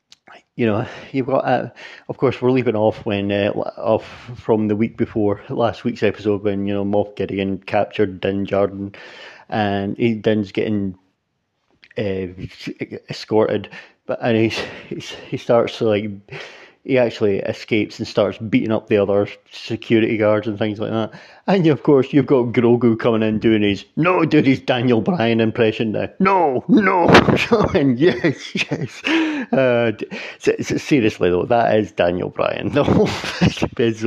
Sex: male